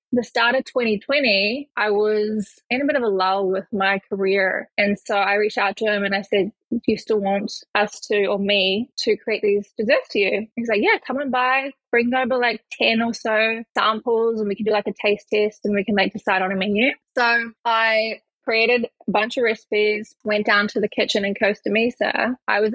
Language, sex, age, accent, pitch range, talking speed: English, female, 20-39, Australian, 205-235 Hz, 225 wpm